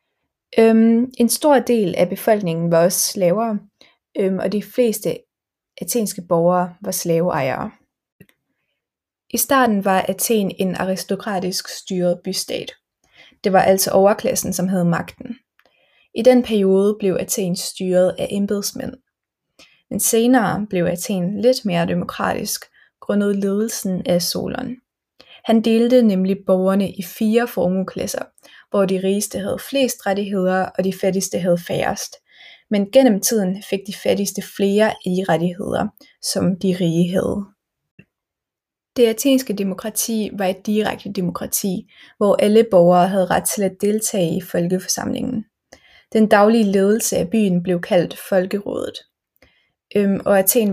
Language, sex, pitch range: Danish, female, 185-225 Hz